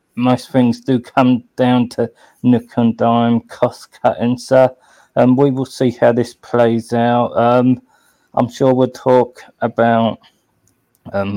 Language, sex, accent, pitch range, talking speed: English, male, British, 115-130 Hz, 140 wpm